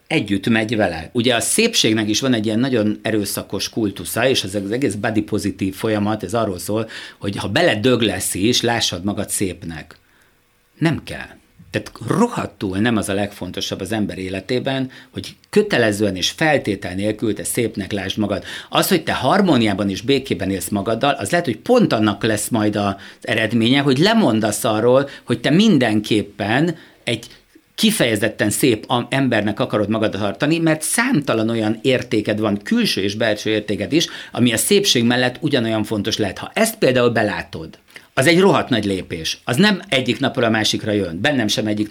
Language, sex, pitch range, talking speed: Hungarian, male, 105-130 Hz, 170 wpm